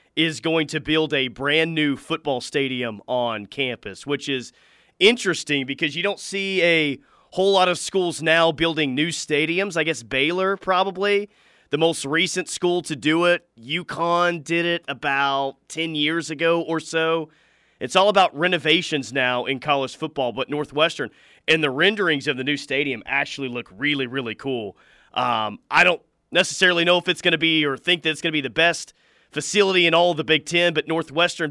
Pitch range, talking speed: 140-180 Hz, 180 wpm